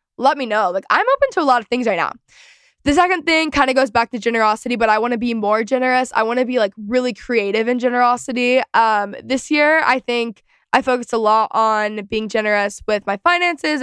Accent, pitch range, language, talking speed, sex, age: American, 210-255 Hz, English, 230 wpm, female, 10-29